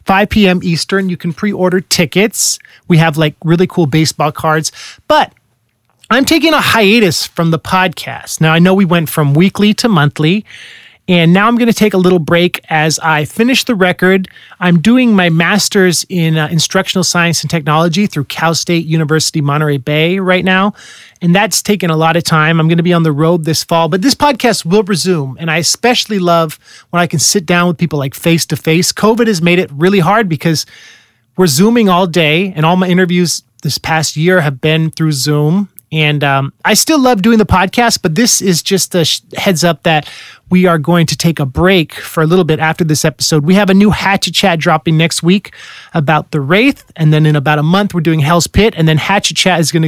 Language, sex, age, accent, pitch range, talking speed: English, male, 30-49, American, 160-190 Hz, 220 wpm